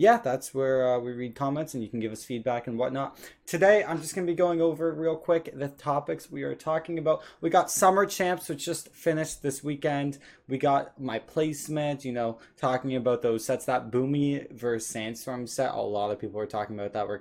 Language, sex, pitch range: English, male, 115-150 Hz